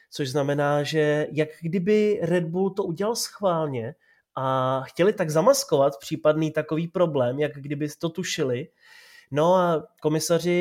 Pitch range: 140-165 Hz